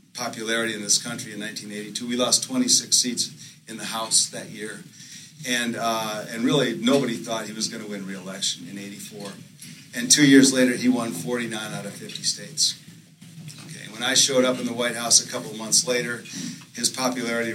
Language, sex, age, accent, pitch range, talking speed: English, male, 40-59, American, 110-140 Hz, 190 wpm